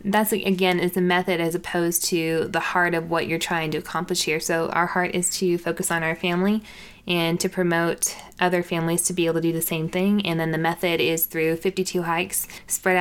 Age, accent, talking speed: 20-39, American, 220 wpm